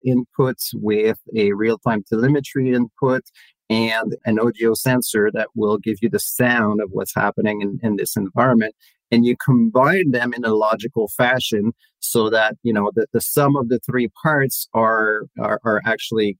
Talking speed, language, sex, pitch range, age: 170 wpm, English, male, 110-135 Hz, 40-59